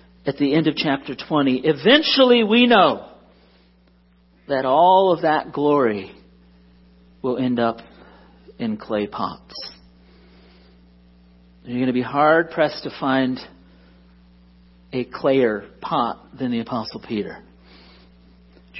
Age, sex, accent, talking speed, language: 50-69, male, American, 120 wpm, English